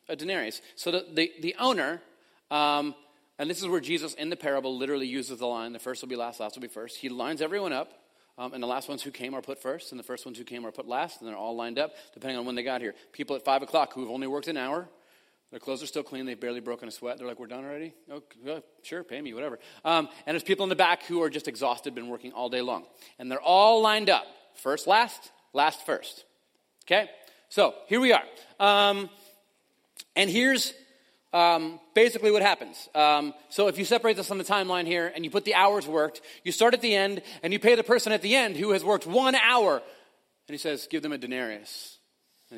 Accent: American